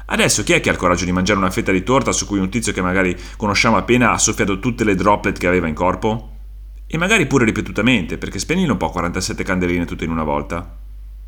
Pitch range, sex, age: 85-120 Hz, male, 30-49